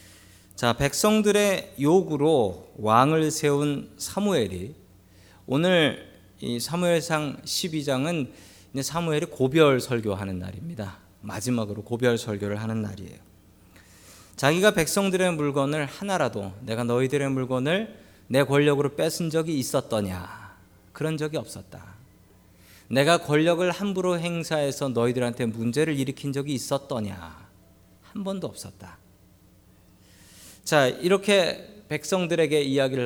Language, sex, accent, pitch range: Korean, male, native, 100-150 Hz